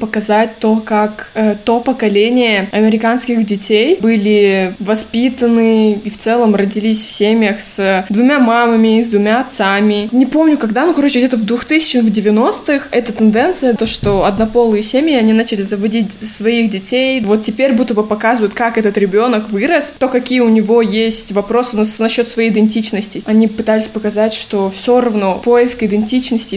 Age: 20-39